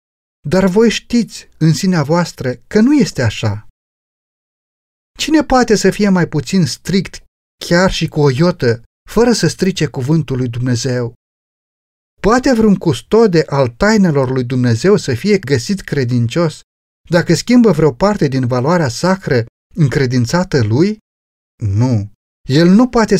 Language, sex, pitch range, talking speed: Romanian, male, 115-185 Hz, 135 wpm